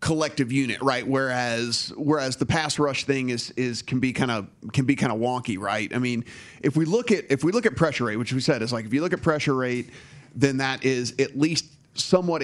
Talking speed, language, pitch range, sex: 240 wpm, English, 120-145 Hz, male